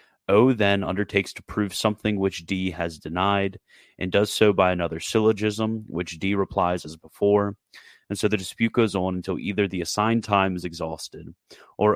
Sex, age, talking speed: male, 30-49, 175 wpm